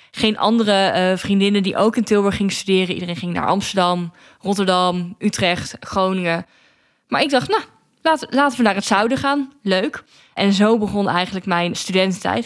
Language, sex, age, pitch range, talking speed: Dutch, female, 20-39, 180-210 Hz, 170 wpm